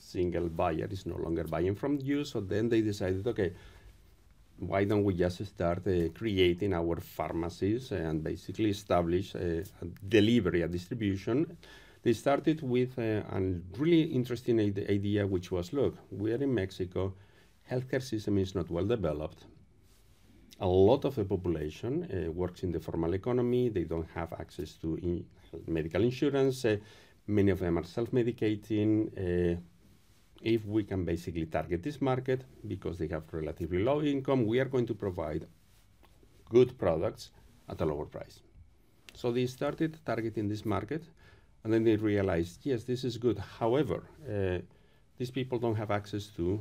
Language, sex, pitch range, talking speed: English, male, 90-115 Hz, 155 wpm